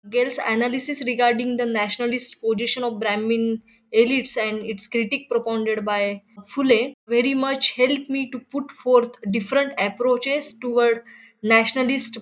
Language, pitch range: English, 220-255 Hz